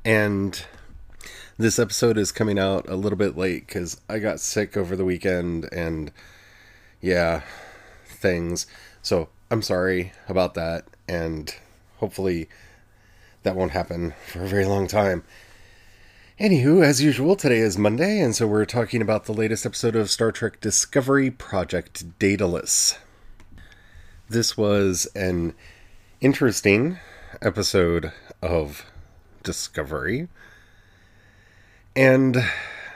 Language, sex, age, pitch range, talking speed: English, male, 30-49, 95-115 Hz, 115 wpm